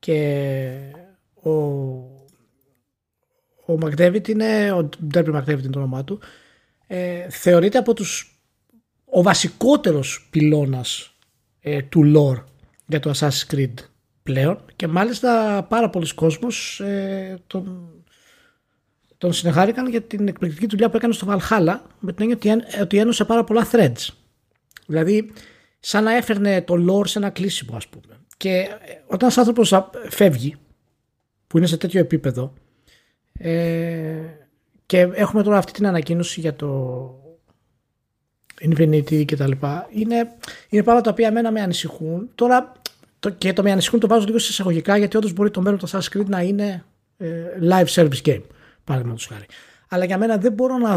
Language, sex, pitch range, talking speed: Greek, male, 150-205 Hz, 150 wpm